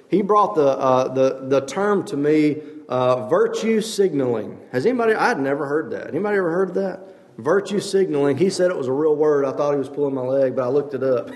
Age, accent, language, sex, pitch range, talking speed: 40-59, American, English, male, 135-185 Hz, 230 wpm